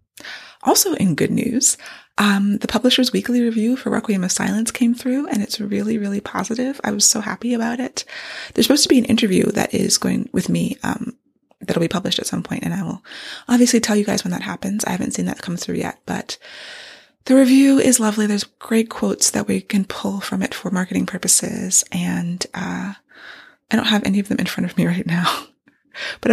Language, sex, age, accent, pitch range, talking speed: English, female, 20-39, American, 185-240 Hz, 210 wpm